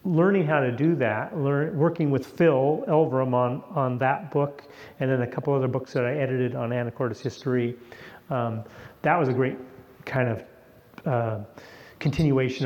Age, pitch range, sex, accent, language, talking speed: 40-59, 125-145 Hz, male, American, English, 165 wpm